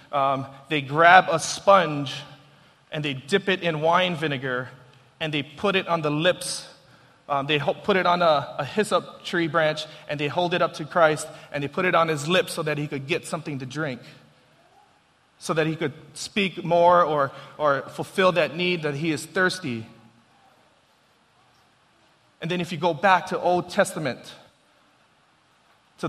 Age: 30-49